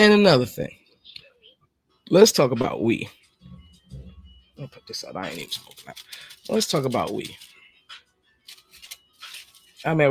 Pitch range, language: 120-170 Hz, English